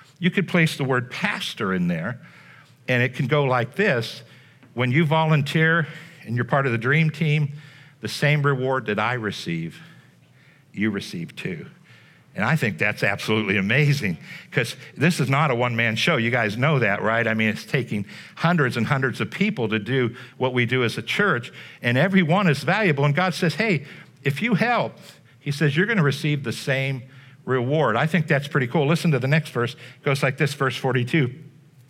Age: 60-79